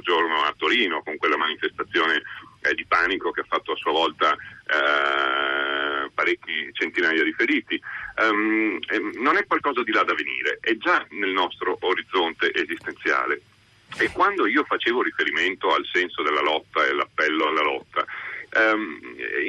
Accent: native